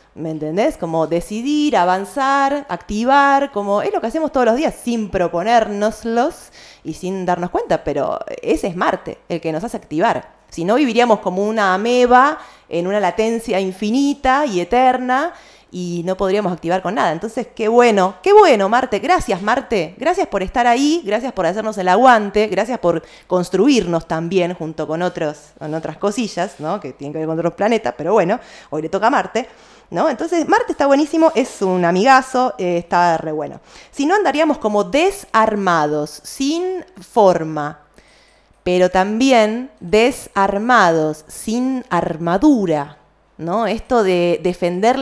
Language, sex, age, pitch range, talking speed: Spanish, female, 20-39, 175-245 Hz, 155 wpm